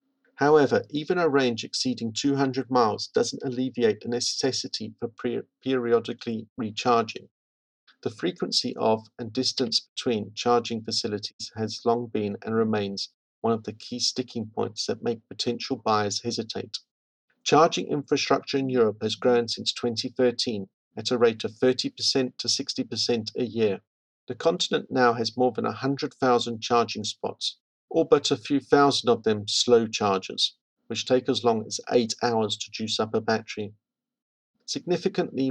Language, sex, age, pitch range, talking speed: English, male, 50-69, 110-130 Hz, 145 wpm